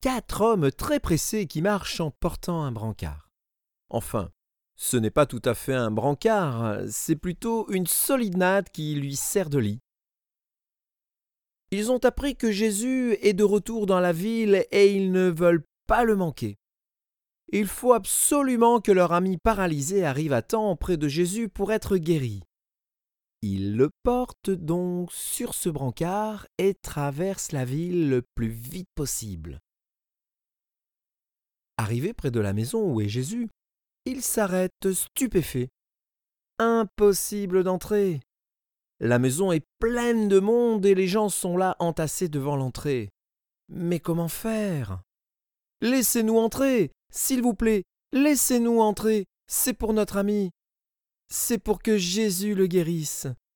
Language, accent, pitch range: French, French, 140-215 Hz